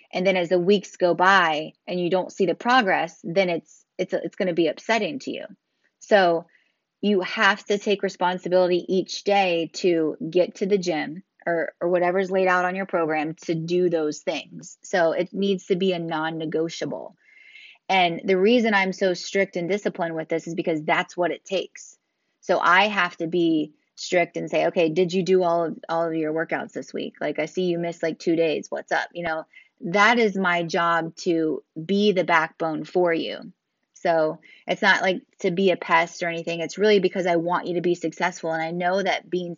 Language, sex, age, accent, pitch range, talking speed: English, female, 20-39, American, 165-195 Hz, 210 wpm